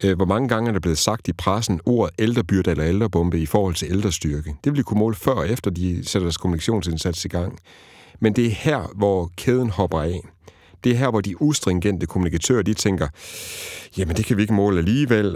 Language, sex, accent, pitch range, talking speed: Danish, male, native, 90-115 Hz, 215 wpm